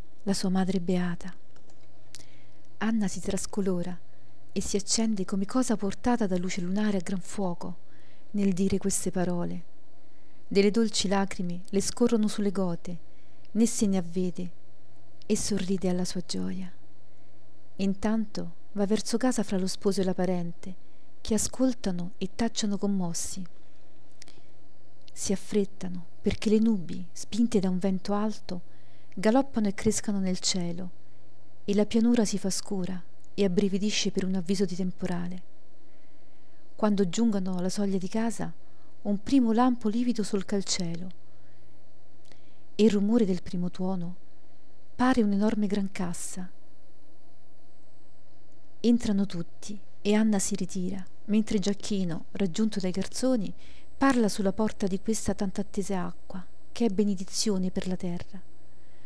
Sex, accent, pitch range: female, native, 185-215 Hz